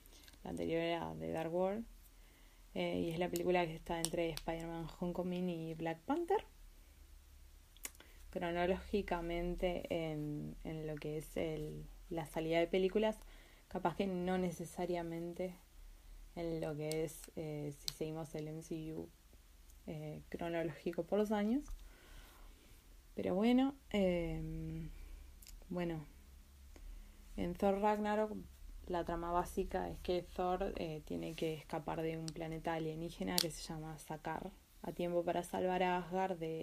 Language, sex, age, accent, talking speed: Spanish, female, 20-39, Argentinian, 130 wpm